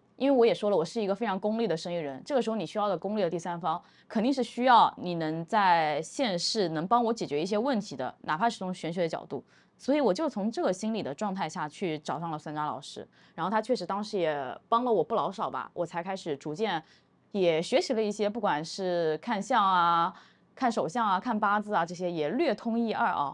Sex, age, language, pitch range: female, 20-39, Chinese, 170-235 Hz